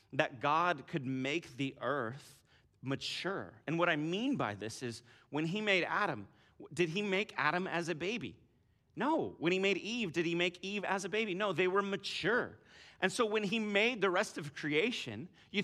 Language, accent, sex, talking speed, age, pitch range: English, American, male, 195 wpm, 30-49, 115-175 Hz